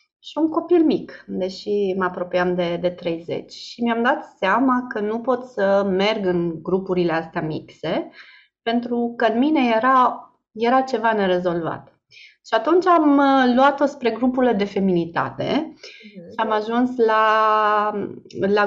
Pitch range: 185-260 Hz